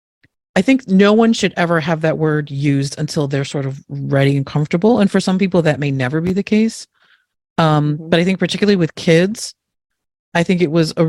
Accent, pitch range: American, 145-180 Hz